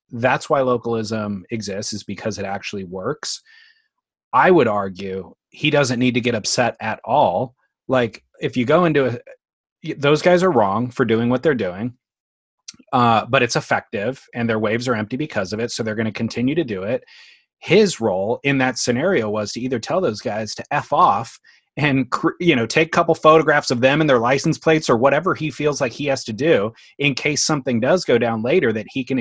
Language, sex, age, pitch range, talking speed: English, male, 30-49, 115-155 Hz, 205 wpm